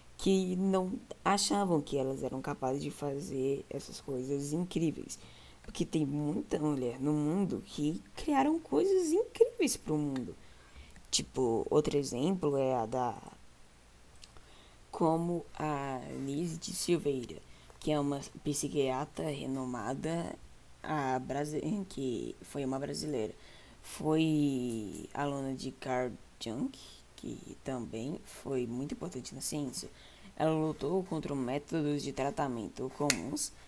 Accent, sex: Brazilian, female